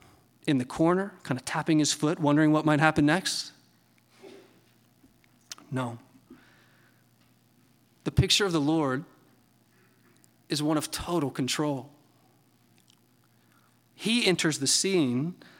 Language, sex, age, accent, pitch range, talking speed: English, male, 30-49, American, 145-180 Hz, 110 wpm